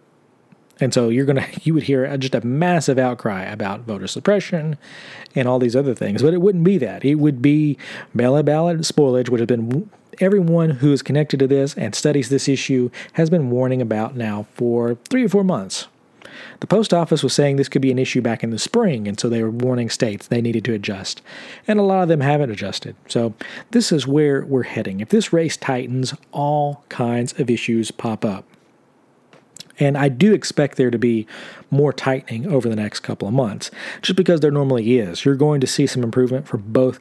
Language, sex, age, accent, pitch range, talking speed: English, male, 40-59, American, 120-150 Hz, 210 wpm